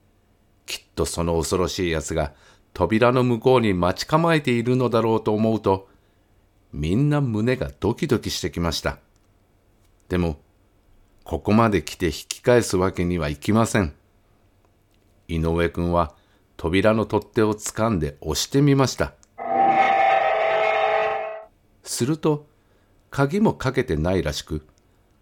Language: Japanese